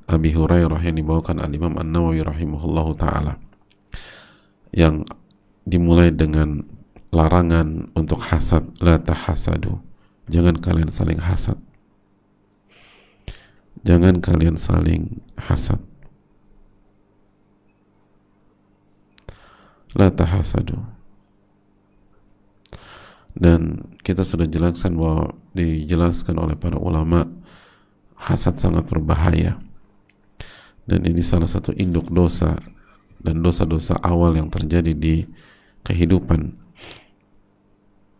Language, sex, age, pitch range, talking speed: Indonesian, male, 50-69, 80-100 Hz, 75 wpm